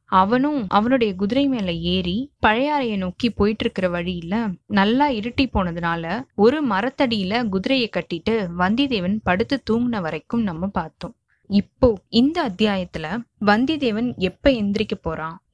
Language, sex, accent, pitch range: Tamil, female, native, 185-245 Hz